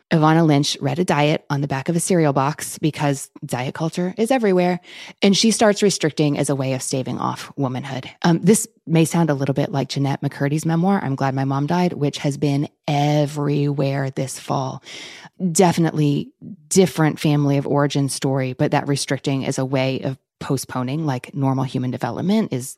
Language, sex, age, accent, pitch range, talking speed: English, female, 20-39, American, 140-170 Hz, 180 wpm